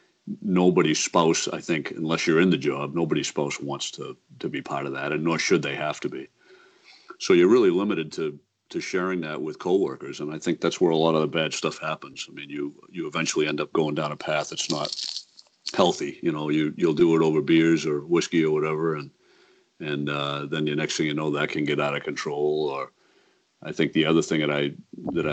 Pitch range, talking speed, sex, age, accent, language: 75-100 Hz, 230 wpm, male, 50-69, American, English